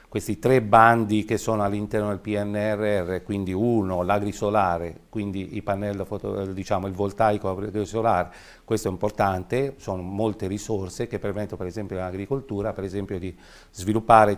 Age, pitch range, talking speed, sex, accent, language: 40-59, 95-110 Hz, 130 wpm, male, native, Italian